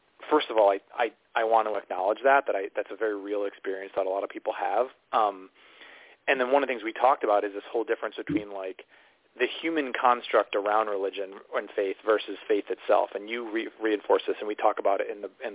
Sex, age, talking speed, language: male, 30-49, 240 wpm, English